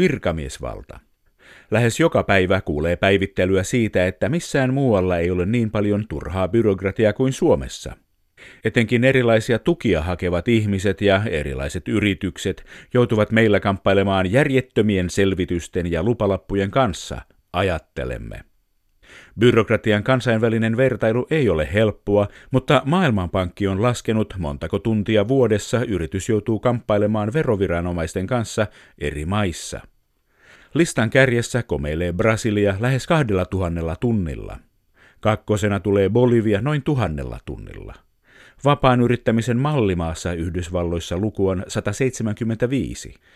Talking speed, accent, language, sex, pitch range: 105 wpm, native, Finnish, male, 90-120 Hz